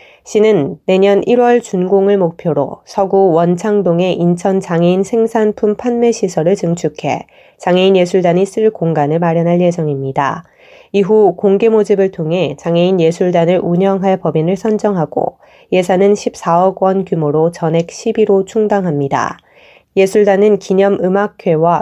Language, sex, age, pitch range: Korean, female, 20-39, 170-200 Hz